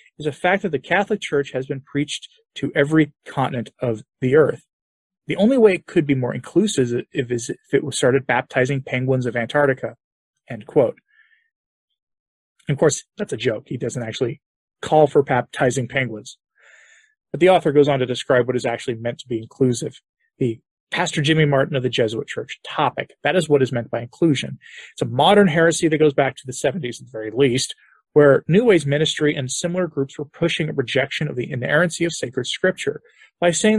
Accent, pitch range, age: American, 135-185 Hz, 30-49